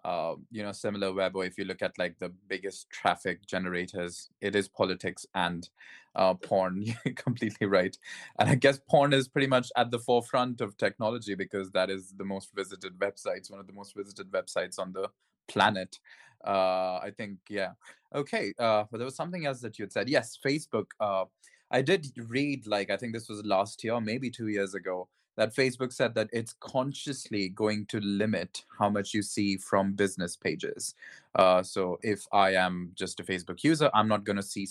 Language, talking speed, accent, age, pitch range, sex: English, 195 wpm, Indian, 20-39, 95-110 Hz, male